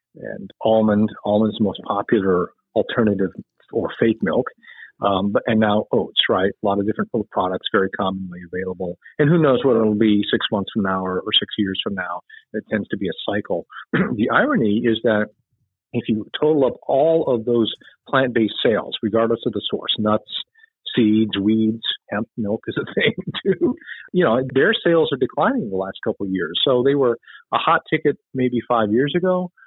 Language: English